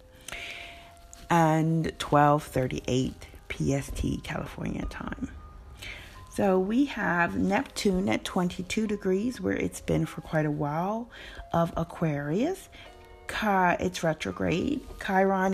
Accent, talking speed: American, 95 wpm